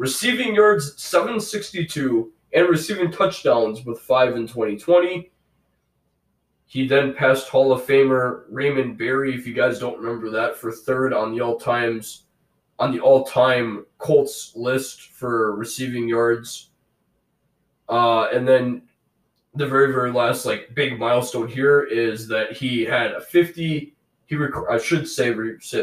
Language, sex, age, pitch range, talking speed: English, male, 20-39, 120-155 Hz, 145 wpm